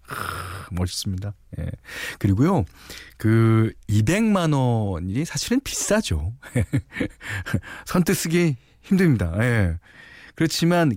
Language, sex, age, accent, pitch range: Korean, male, 40-59, native, 90-140 Hz